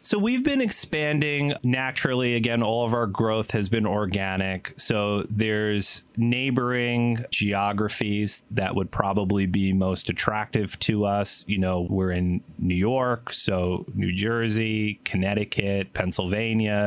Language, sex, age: English, male, 30-49